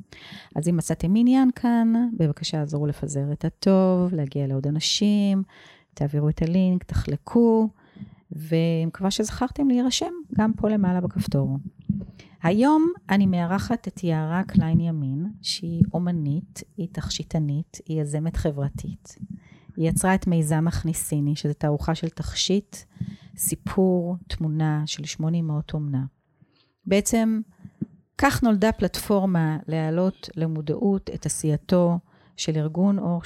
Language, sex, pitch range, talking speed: Hebrew, female, 155-190 Hz, 115 wpm